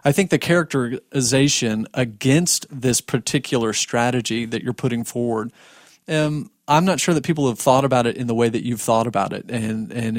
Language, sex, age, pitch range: English, male, 40-59, 120-150 Hz